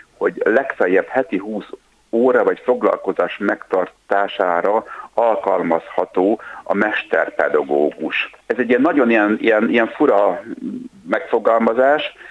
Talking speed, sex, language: 95 wpm, male, Hungarian